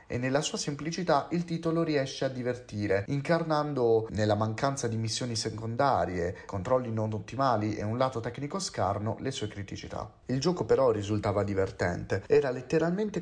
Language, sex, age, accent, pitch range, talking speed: Italian, male, 30-49, native, 105-150 Hz, 150 wpm